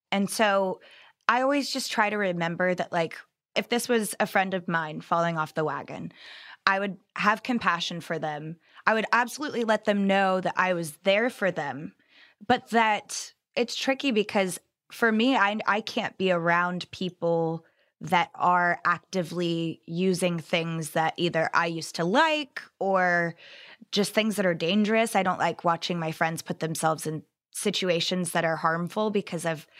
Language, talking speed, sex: English, 165 wpm, female